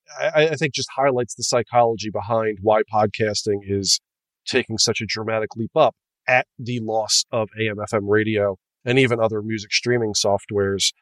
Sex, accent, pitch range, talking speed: male, American, 110-140 Hz, 165 wpm